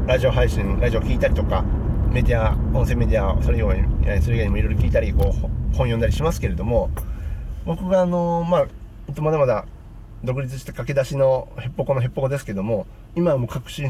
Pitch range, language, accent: 95-140 Hz, Japanese, native